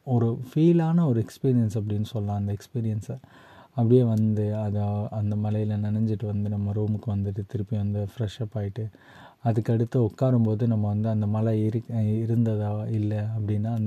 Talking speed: 130 wpm